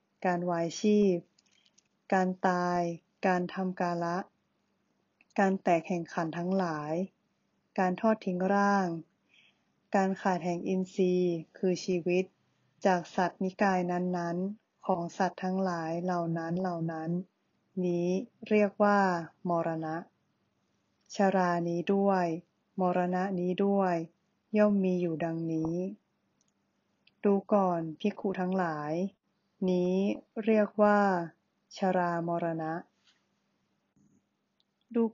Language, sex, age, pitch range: Thai, female, 20-39, 175-205 Hz